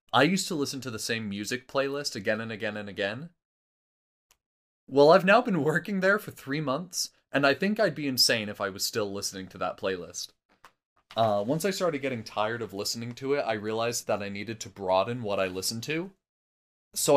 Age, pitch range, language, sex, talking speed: 20-39, 100-130 Hz, English, male, 205 wpm